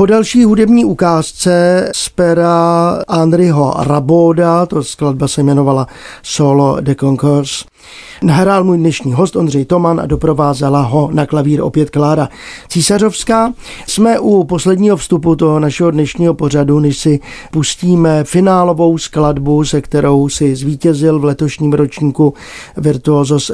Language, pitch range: Czech, 145-180 Hz